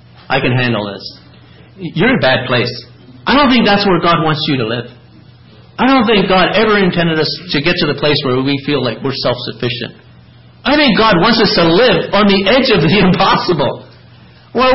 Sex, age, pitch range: male, 50-69, 150-220 Hz